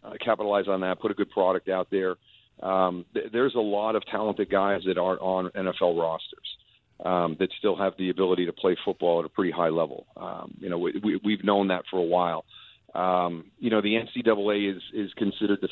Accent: American